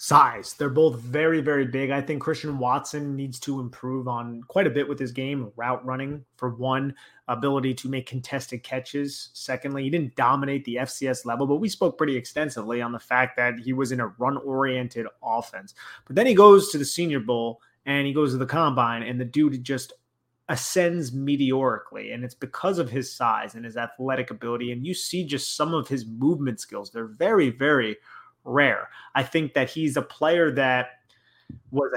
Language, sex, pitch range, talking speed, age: English, male, 125-155 Hz, 195 wpm, 30-49